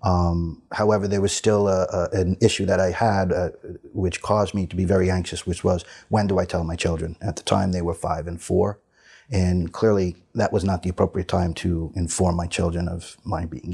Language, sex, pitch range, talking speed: English, male, 90-100 Hz, 225 wpm